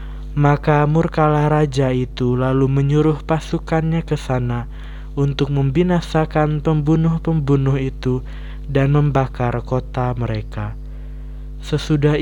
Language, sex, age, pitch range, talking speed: Indonesian, male, 20-39, 120-150 Hz, 90 wpm